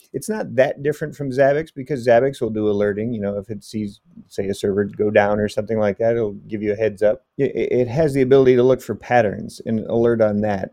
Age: 30-49